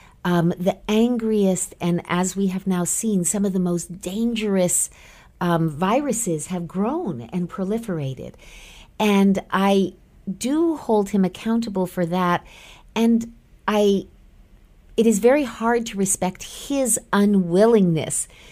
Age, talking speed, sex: 50-69, 125 wpm, female